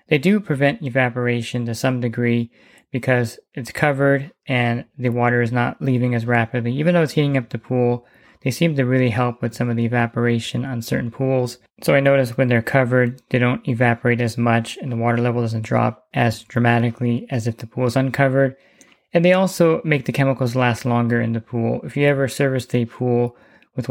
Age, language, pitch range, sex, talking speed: 20-39, English, 120-135 Hz, male, 205 wpm